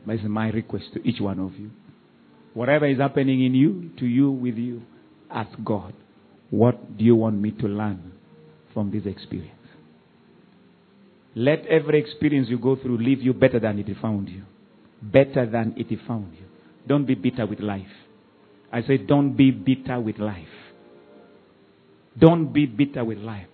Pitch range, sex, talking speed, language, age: 110-140 Hz, male, 165 wpm, English, 50-69